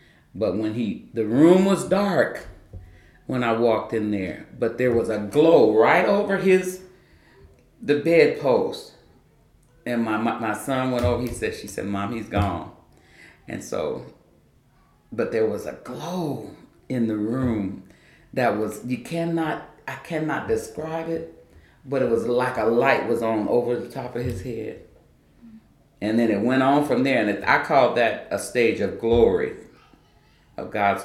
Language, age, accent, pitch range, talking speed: English, 40-59, American, 110-165 Hz, 160 wpm